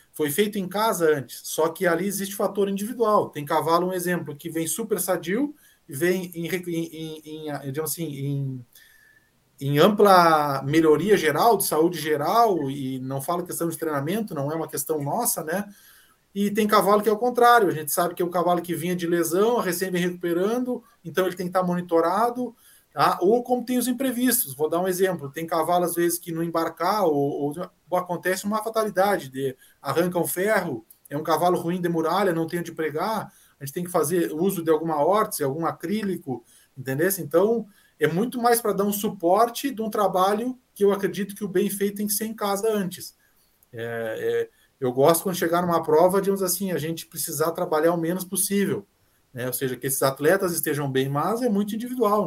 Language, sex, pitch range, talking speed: Portuguese, male, 155-205 Hz, 200 wpm